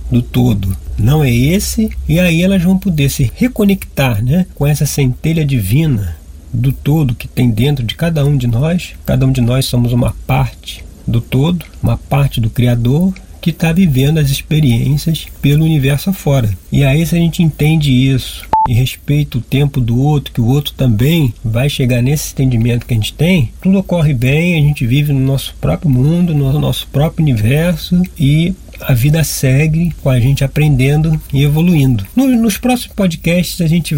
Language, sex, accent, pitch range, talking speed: Portuguese, male, Brazilian, 125-155 Hz, 180 wpm